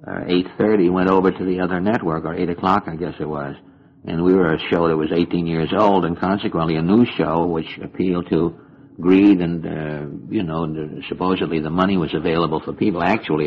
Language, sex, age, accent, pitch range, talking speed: English, male, 60-79, American, 85-95 Hz, 205 wpm